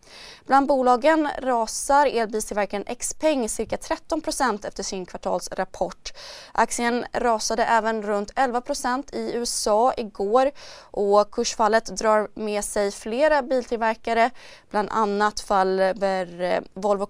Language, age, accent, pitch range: Swedish, 20-39, native, 200-260 Hz